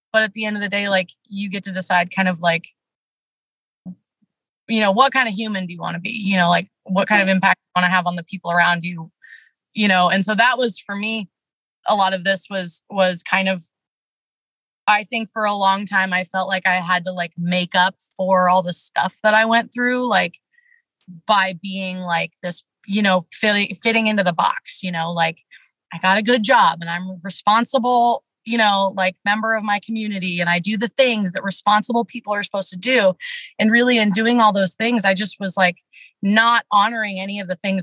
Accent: American